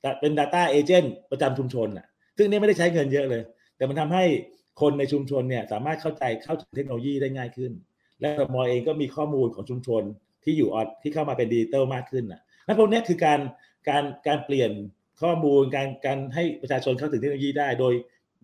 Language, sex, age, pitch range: Thai, male, 30-49, 125-165 Hz